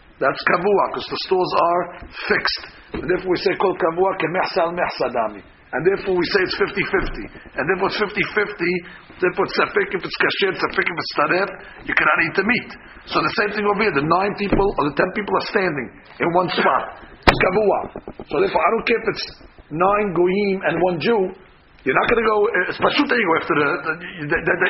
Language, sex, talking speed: English, male, 190 wpm